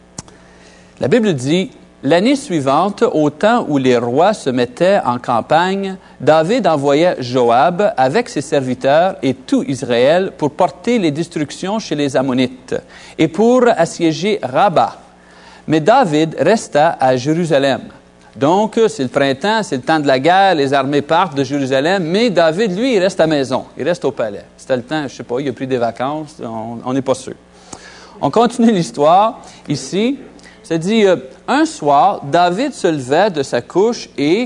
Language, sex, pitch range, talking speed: French, male, 130-195 Hz, 170 wpm